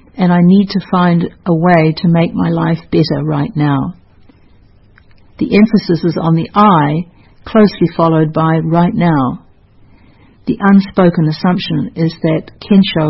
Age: 60-79